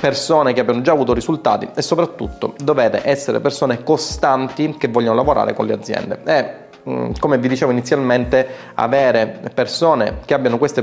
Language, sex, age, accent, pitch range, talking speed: Italian, male, 30-49, native, 120-135 Hz, 155 wpm